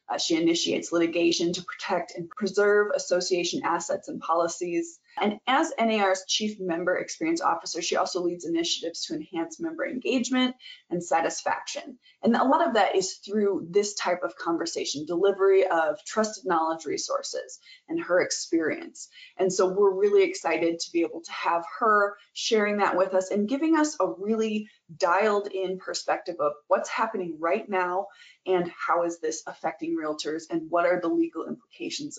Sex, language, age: female, English, 20-39